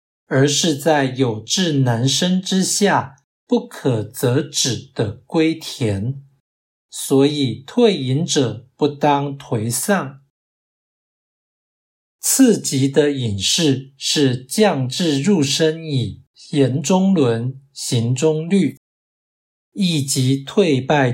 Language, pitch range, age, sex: Chinese, 120-150 Hz, 60-79, male